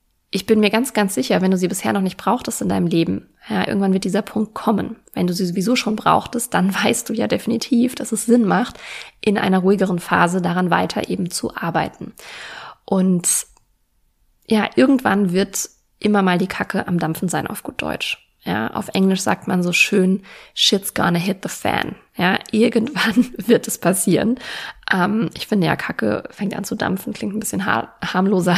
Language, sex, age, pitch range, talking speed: German, female, 20-39, 180-215 Hz, 190 wpm